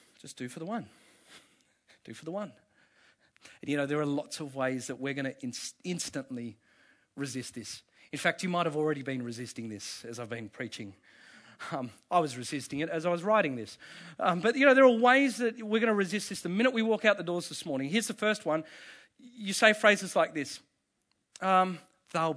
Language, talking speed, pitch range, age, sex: English, 215 wpm, 140-220 Hz, 40-59, male